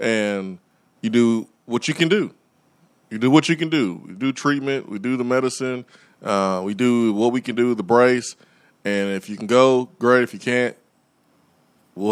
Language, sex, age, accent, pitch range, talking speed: English, male, 20-39, American, 100-125 Hz, 195 wpm